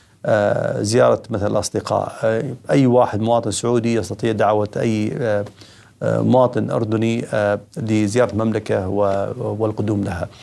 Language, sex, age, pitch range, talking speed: Arabic, male, 40-59, 110-130 Hz, 90 wpm